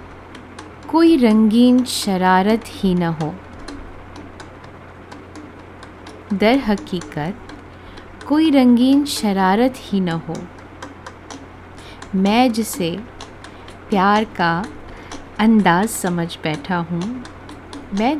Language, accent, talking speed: Hindi, native, 75 wpm